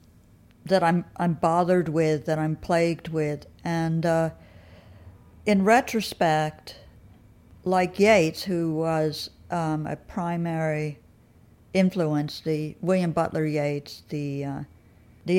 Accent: American